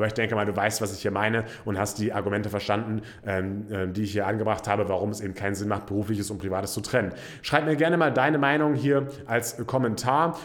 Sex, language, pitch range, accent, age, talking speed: male, German, 105-125 Hz, German, 30-49, 230 wpm